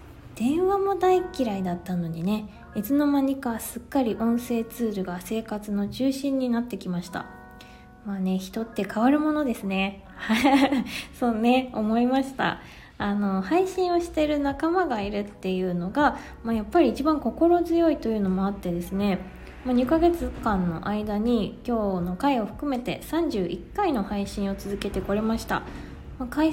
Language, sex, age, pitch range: Japanese, female, 20-39, 195-275 Hz